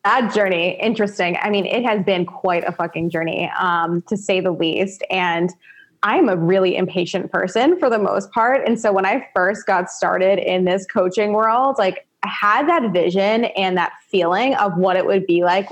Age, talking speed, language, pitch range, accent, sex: 20-39, 200 wpm, English, 185-225 Hz, American, female